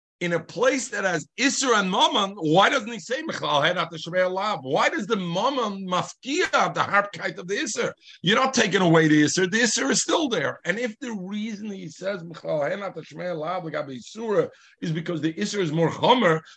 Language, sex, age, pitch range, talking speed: English, male, 50-69, 145-200 Hz, 215 wpm